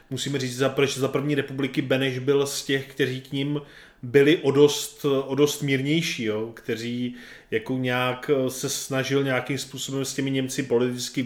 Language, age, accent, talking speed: Czech, 20-39, native, 160 wpm